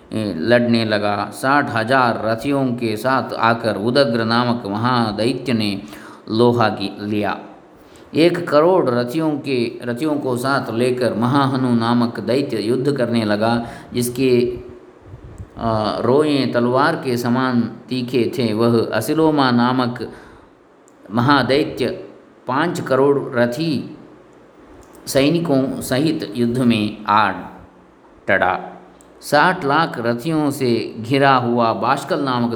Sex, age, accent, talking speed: male, 50-69, native, 105 wpm